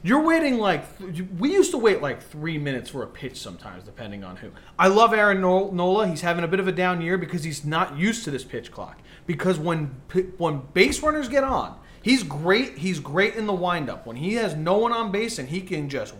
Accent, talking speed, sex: American, 230 wpm, male